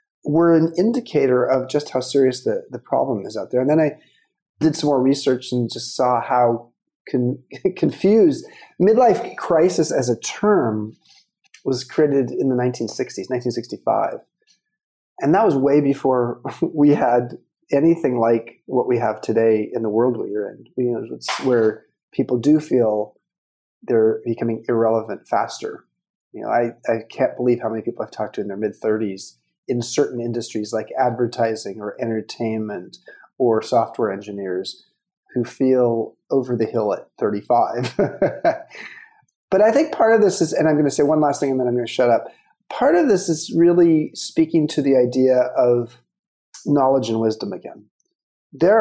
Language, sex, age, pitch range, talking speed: English, male, 30-49, 115-145 Hz, 165 wpm